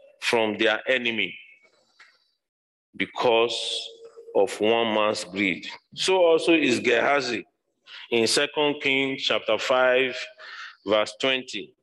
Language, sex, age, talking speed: English, male, 40-59, 95 wpm